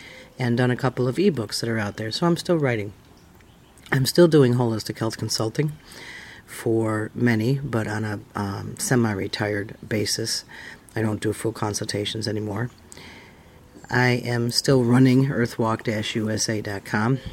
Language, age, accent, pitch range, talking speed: English, 40-59, American, 105-130 Hz, 135 wpm